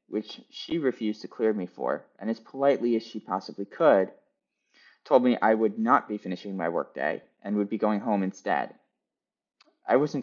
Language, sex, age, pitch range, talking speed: English, male, 20-39, 100-145 Hz, 180 wpm